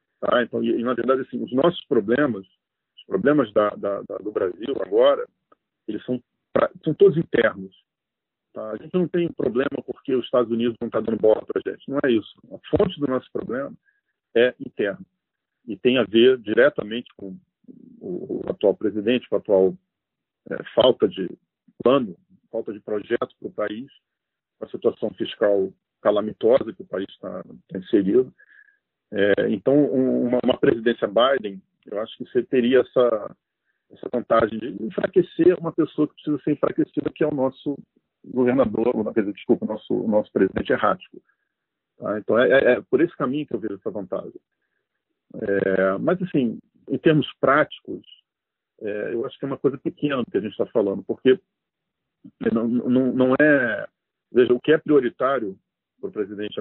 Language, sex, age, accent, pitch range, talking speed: Portuguese, male, 40-59, Brazilian, 115-180 Hz, 180 wpm